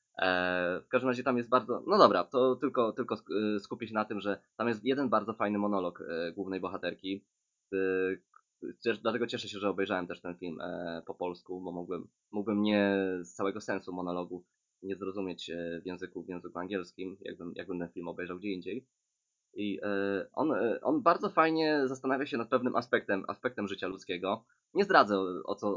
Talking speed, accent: 170 wpm, native